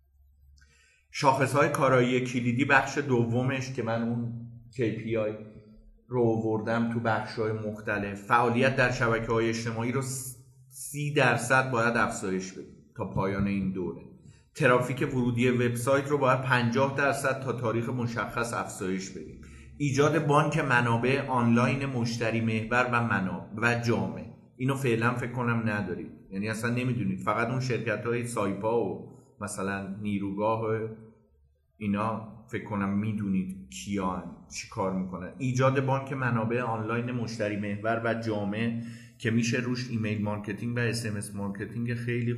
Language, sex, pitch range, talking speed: Persian, male, 105-125 Hz, 125 wpm